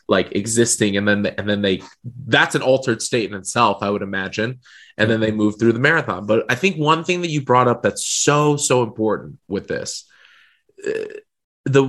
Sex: male